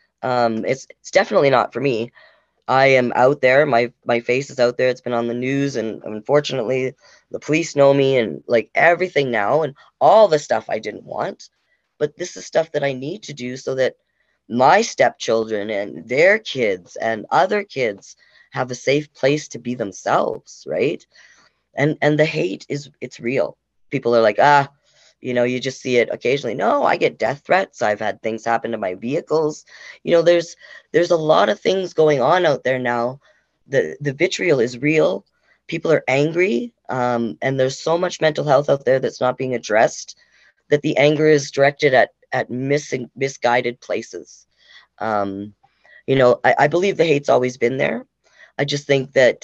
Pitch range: 120-150 Hz